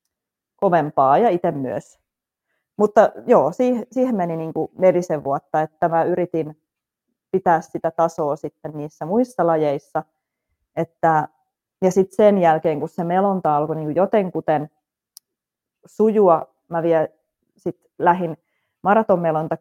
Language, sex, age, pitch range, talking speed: Finnish, female, 30-49, 155-180 Hz, 105 wpm